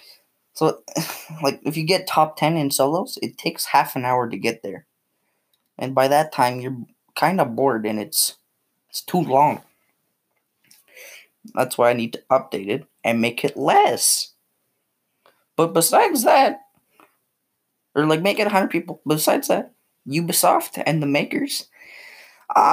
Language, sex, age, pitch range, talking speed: English, male, 10-29, 140-185 Hz, 150 wpm